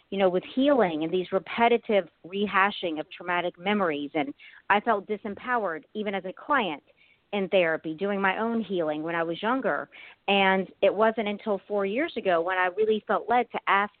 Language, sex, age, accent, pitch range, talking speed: English, female, 40-59, American, 185-240 Hz, 185 wpm